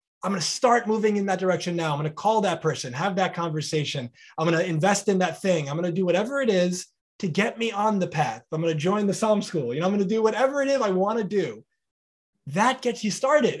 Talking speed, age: 275 wpm, 20-39